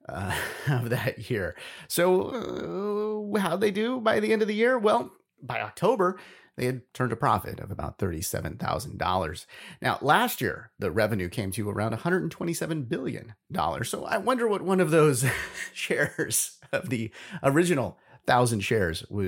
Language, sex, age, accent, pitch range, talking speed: English, male, 30-49, American, 105-165 Hz, 155 wpm